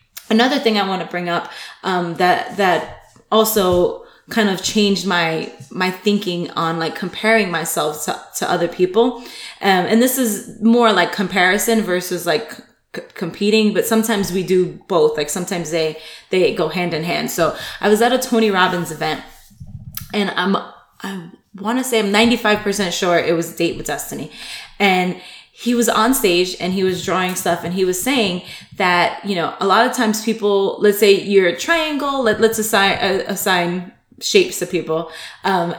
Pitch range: 180-225 Hz